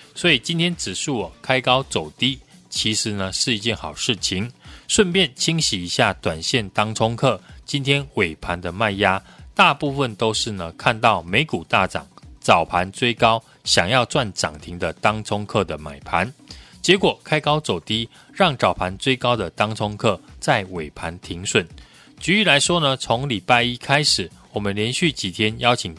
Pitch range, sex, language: 95-135 Hz, male, Chinese